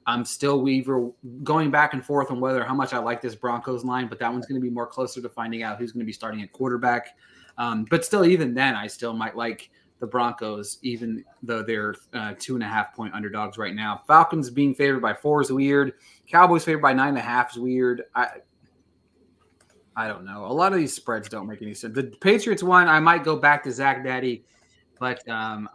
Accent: American